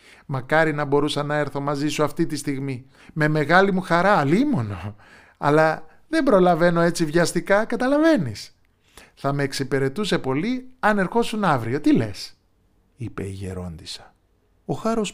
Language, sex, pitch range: Greek, male, 110-170 Hz